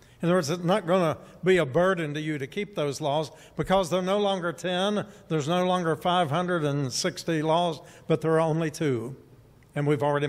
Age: 60-79